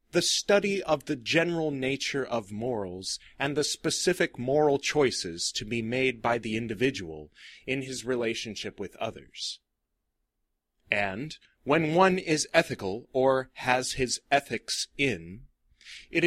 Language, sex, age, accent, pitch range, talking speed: English, male, 30-49, American, 115-155 Hz, 130 wpm